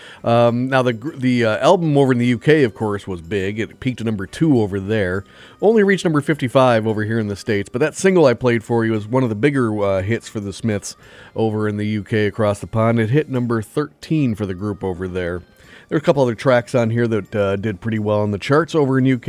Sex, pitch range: male, 100-120 Hz